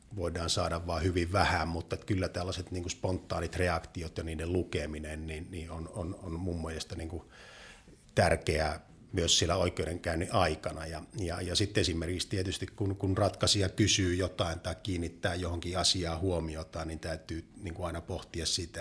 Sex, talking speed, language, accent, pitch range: male, 145 wpm, Finnish, native, 80-95 Hz